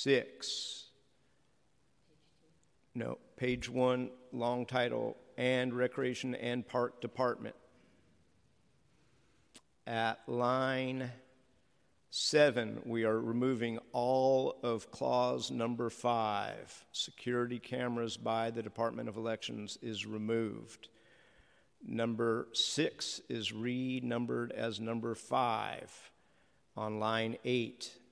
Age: 50-69